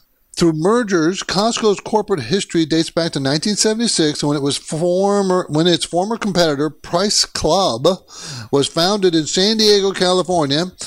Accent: American